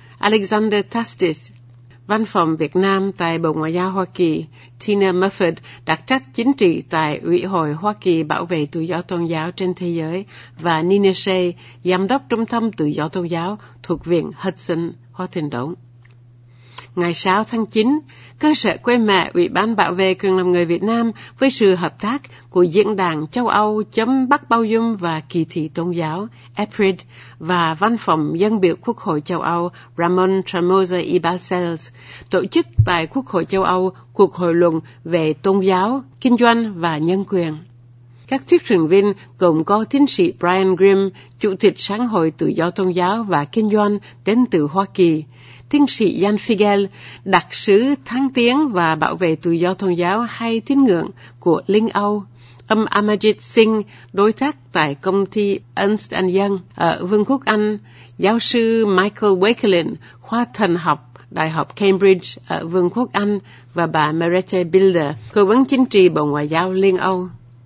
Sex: female